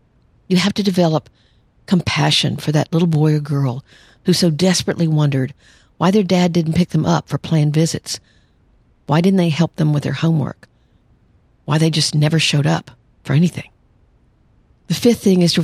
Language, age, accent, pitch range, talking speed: English, 50-69, American, 145-175 Hz, 175 wpm